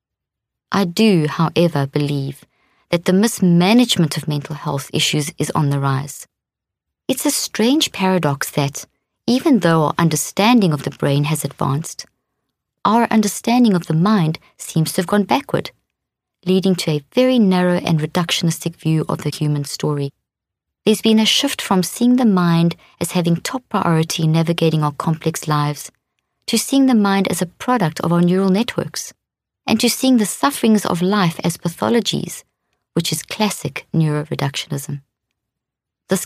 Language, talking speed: English, 155 wpm